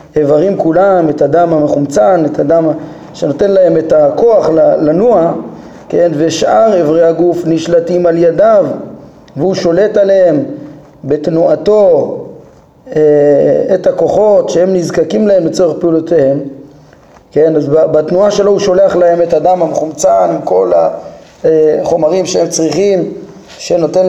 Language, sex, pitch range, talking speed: Hebrew, male, 155-195 Hz, 115 wpm